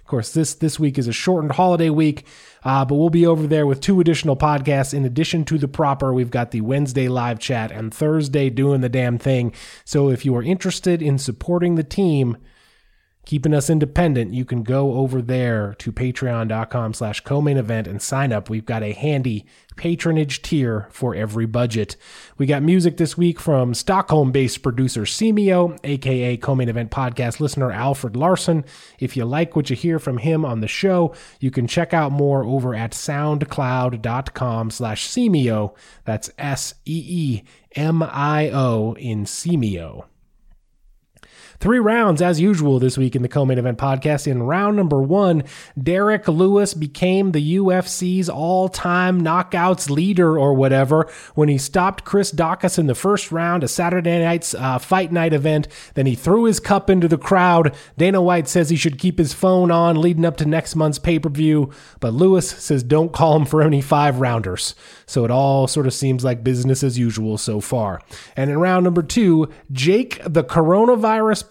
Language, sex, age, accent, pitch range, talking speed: English, male, 20-39, American, 130-170 Hz, 170 wpm